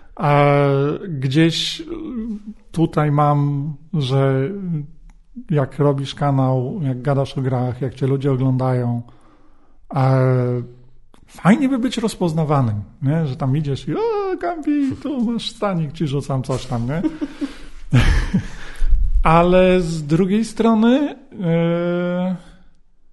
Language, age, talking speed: Polish, 40-59, 105 wpm